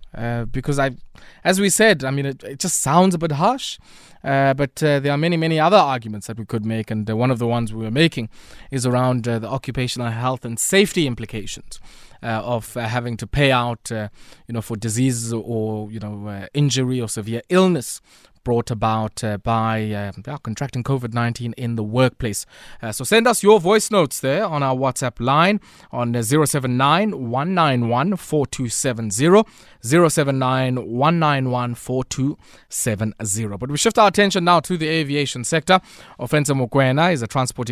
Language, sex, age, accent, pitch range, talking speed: English, male, 20-39, South African, 120-170 Hz, 175 wpm